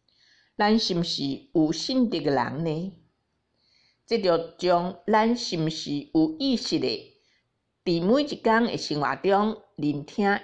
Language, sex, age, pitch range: Chinese, female, 50-69, 155-225 Hz